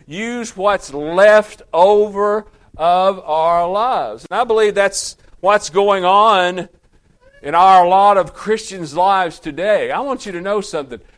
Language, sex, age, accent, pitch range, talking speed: English, male, 50-69, American, 175-225 Hz, 145 wpm